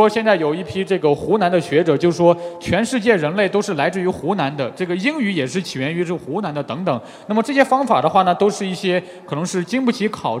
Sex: male